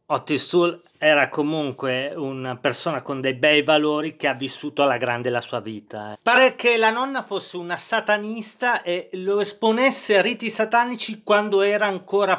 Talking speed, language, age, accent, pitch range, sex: 165 wpm, Italian, 40-59, native, 145-220 Hz, male